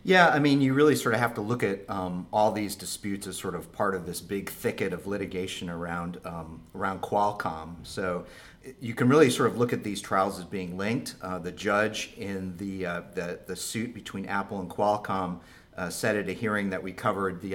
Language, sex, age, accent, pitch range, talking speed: English, male, 40-59, American, 90-105 Hz, 220 wpm